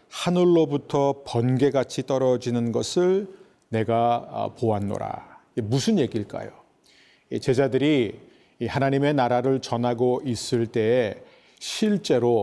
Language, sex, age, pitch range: Korean, male, 40-59, 115-145 Hz